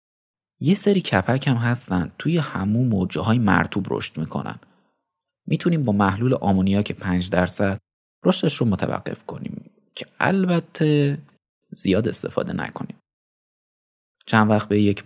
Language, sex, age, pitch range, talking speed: Persian, male, 20-39, 95-125 Hz, 125 wpm